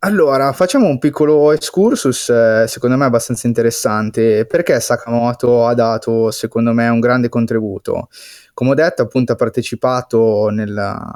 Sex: male